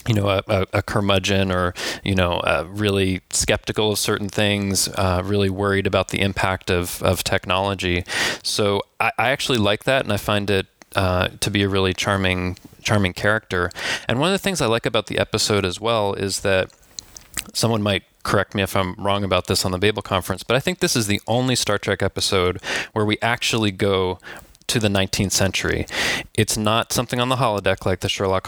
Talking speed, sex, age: 200 wpm, male, 20-39